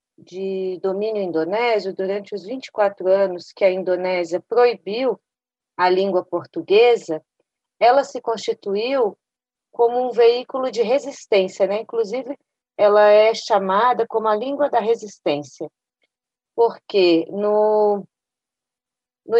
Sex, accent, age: female, Brazilian, 40-59